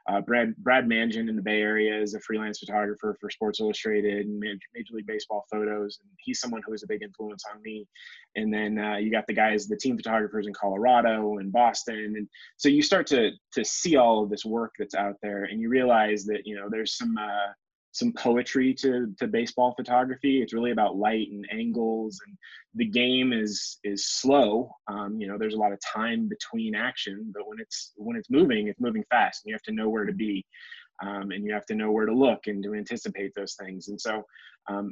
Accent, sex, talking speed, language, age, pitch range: American, male, 225 wpm, English, 20-39, 105-120 Hz